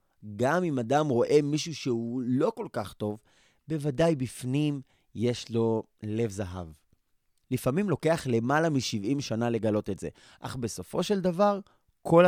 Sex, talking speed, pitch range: male, 140 wpm, 115-170 Hz